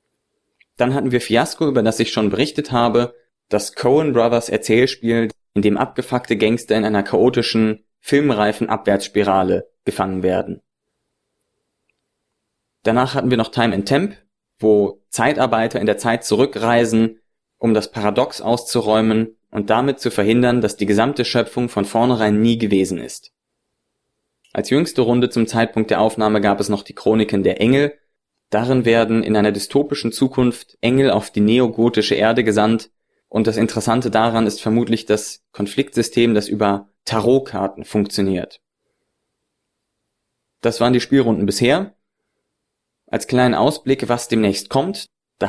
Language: German